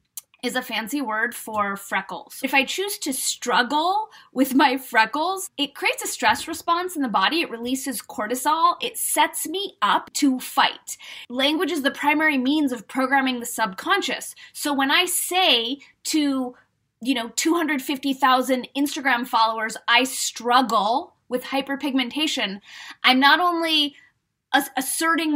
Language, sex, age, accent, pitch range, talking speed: English, female, 20-39, American, 245-300 Hz, 135 wpm